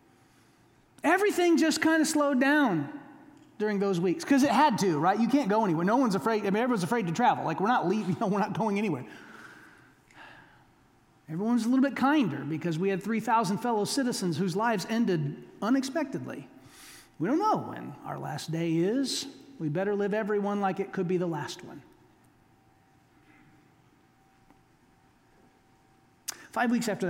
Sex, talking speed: male, 165 wpm